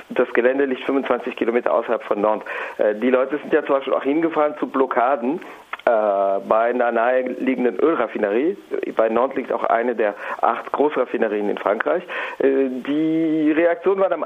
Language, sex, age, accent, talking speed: German, male, 50-69, German, 150 wpm